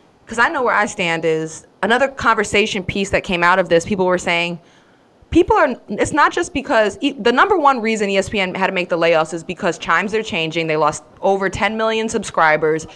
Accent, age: American, 20-39